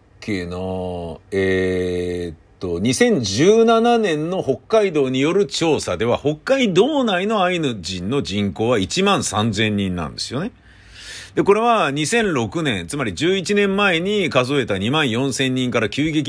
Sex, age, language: male, 50-69, Japanese